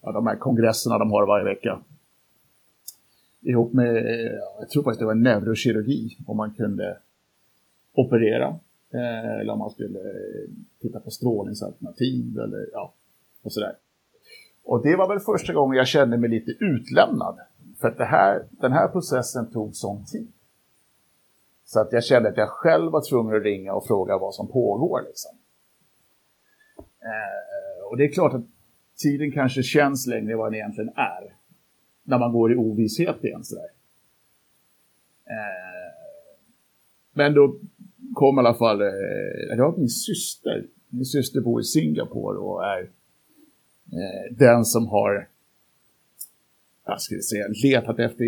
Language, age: Swedish, 50-69